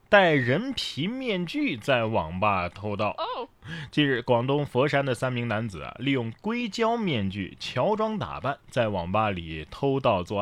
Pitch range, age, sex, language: 100-150 Hz, 20-39, male, Chinese